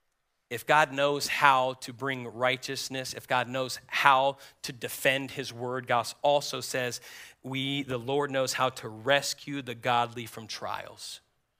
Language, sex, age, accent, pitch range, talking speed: English, male, 40-59, American, 130-160 Hz, 150 wpm